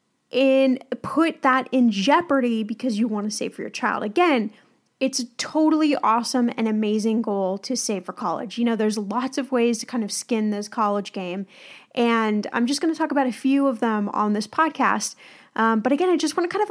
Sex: female